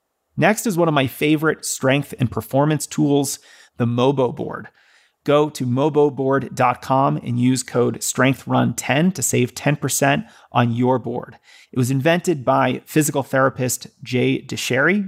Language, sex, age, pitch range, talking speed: English, male, 30-49, 125-150 Hz, 135 wpm